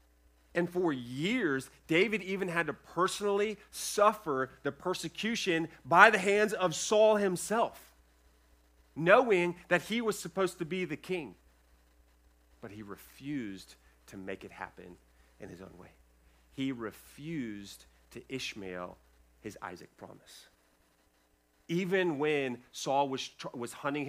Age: 30-49